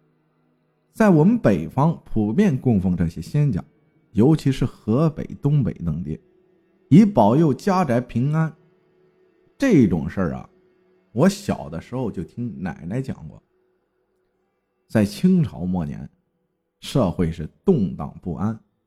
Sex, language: male, Chinese